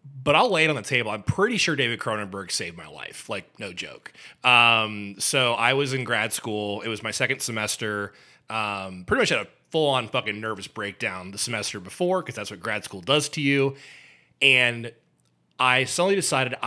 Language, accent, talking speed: English, American, 195 wpm